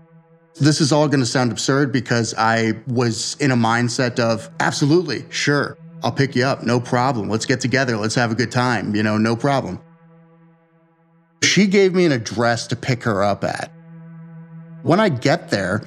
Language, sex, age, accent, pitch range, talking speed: English, male, 30-49, American, 115-165 Hz, 180 wpm